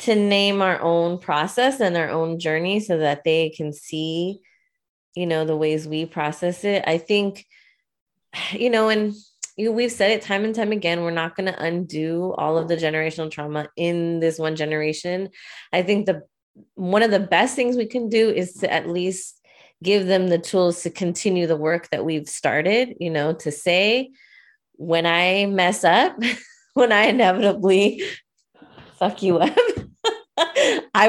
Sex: female